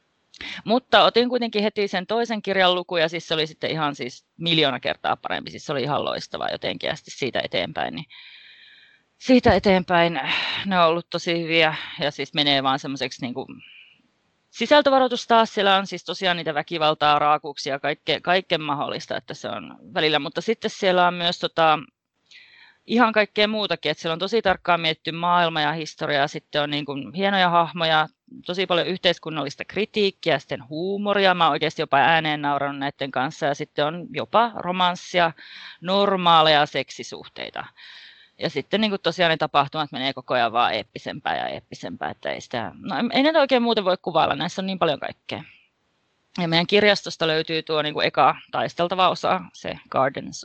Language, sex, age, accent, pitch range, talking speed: Finnish, female, 30-49, native, 155-200 Hz, 165 wpm